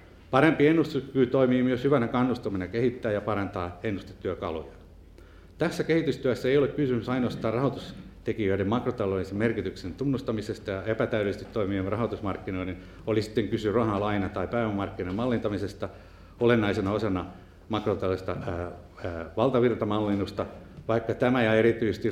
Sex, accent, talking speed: male, native, 110 wpm